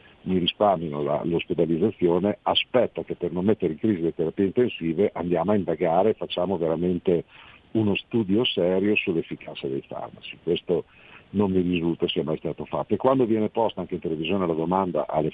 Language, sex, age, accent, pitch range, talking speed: Italian, male, 50-69, native, 90-115 Hz, 170 wpm